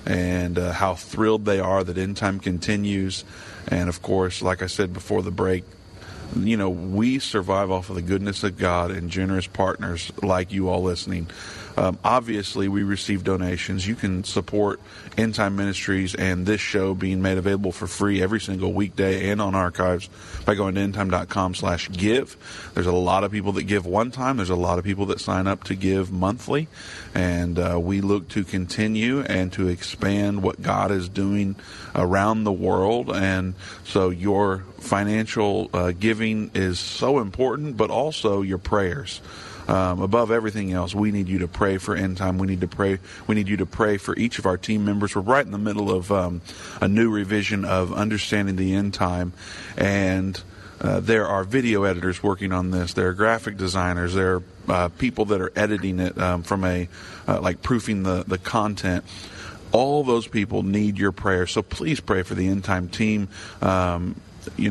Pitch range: 90-105 Hz